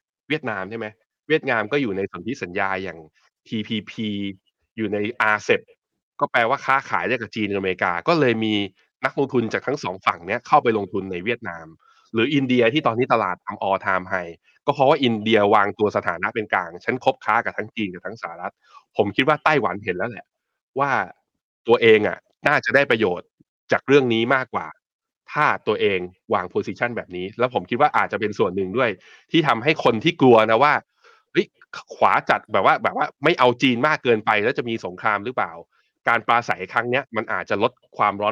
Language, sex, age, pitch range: Thai, male, 20-39, 100-130 Hz